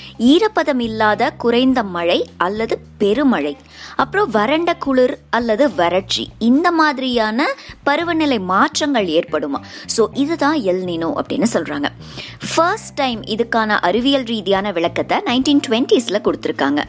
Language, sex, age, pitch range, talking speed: Tamil, male, 20-39, 180-280 Hz, 55 wpm